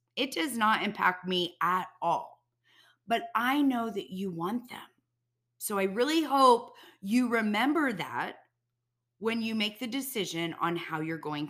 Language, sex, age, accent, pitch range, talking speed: English, female, 30-49, American, 145-240 Hz, 155 wpm